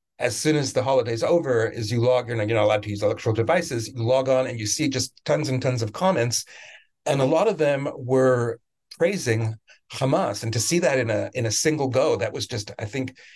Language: English